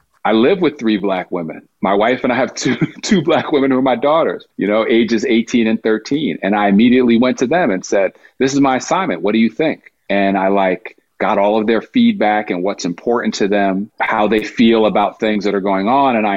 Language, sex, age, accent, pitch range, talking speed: English, male, 40-59, American, 95-120 Hz, 240 wpm